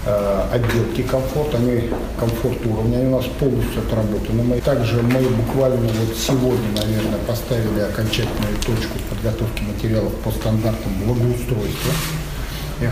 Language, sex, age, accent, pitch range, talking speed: Russian, male, 50-69, native, 110-120 Hz, 115 wpm